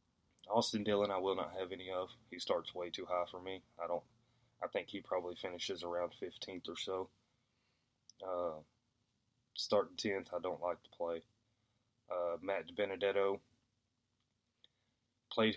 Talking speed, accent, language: 145 wpm, American, English